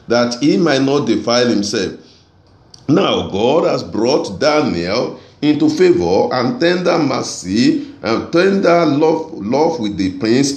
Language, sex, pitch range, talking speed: English, male, 115-170 Hz, 130 wpm